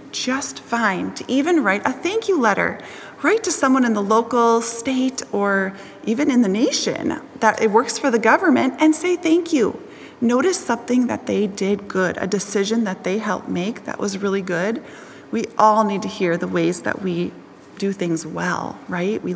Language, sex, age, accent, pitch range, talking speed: English, female, 30-49, American, 205-285 Hz, 190 wpm